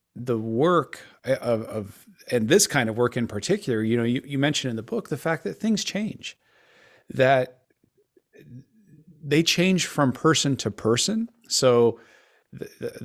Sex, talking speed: male, 150 wpm